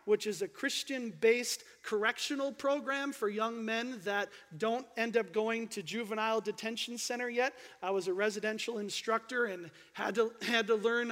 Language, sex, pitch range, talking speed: English, male, 205-245 Hz, 160 wpm